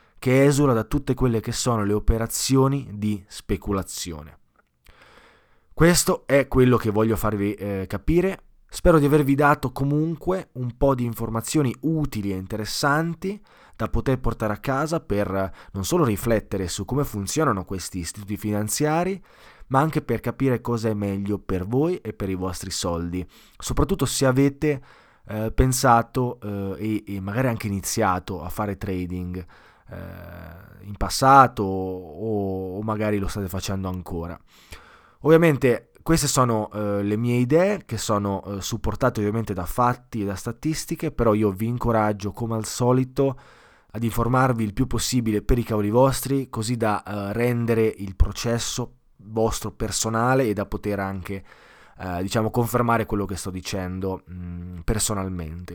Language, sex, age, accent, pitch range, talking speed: Italian, male, 20-39, native, 100-130 Hz, 140 wpm